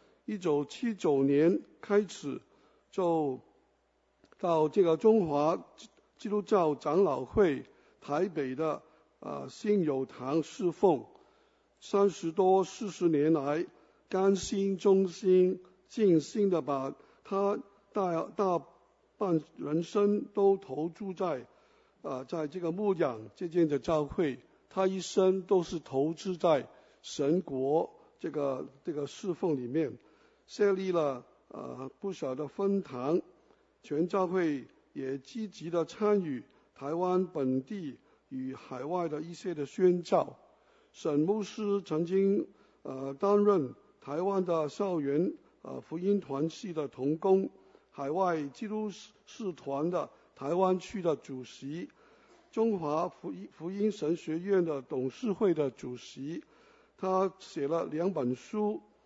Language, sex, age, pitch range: English, male, 60-79, 150-200 Hz